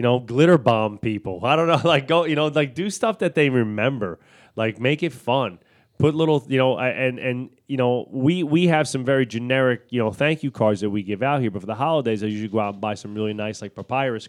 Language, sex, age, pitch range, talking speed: English, male, 30-49, 105-130 Hz, 255 wpm